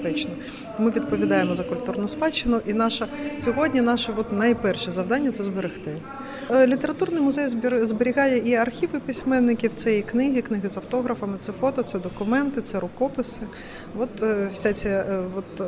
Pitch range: 190-240 Hz